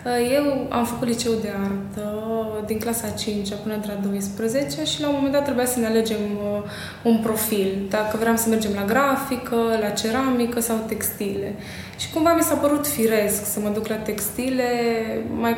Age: 20-39